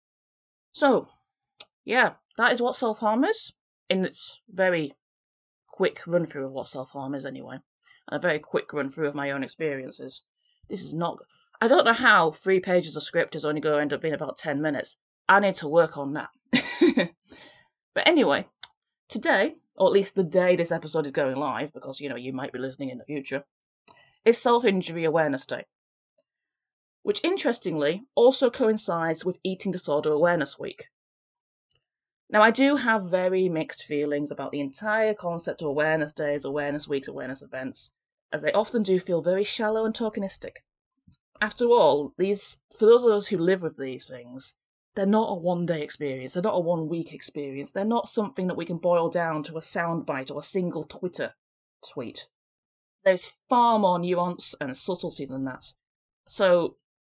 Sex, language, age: female, English, 30-49